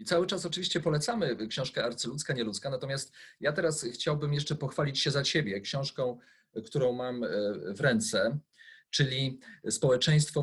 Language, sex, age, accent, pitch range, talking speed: Polish, male, 30-49, native, 120-155 Hz, 140 wpm